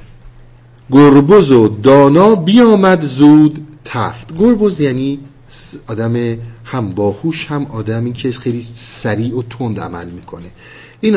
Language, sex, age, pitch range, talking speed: Persian, male, 50-69, 115-155 Hz, 115 wpm